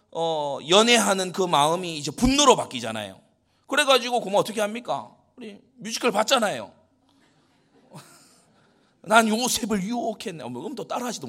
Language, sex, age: Korean, male, 30-49